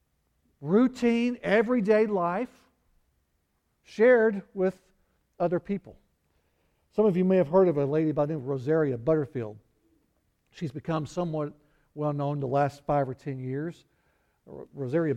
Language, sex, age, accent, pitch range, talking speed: English, male, 60-79, American, 140-185 Hz, 130 wpm